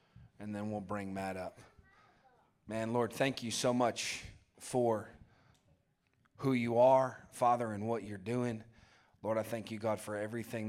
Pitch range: 100-110 Hz